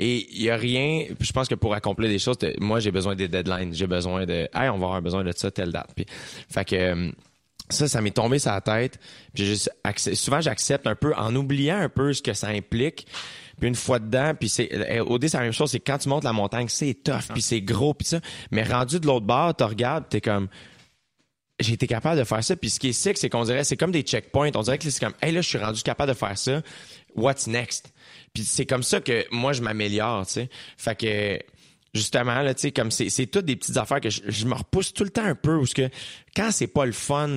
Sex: male